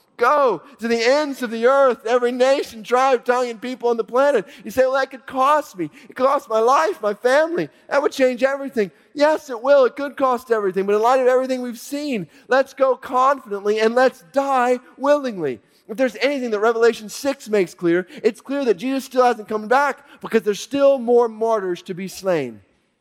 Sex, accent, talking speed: male, American, 205 wpm